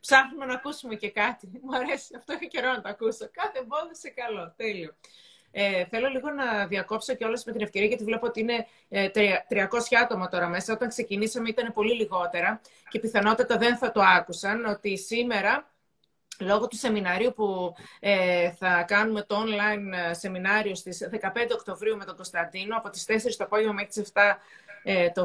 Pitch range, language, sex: 195-235 Hz, Greek, female